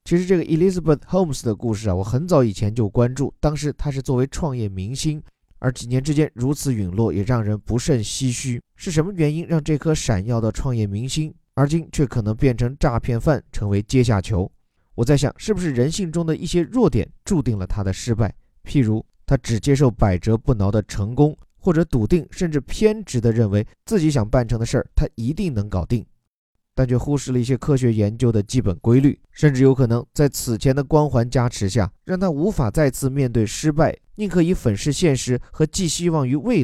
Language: Chinese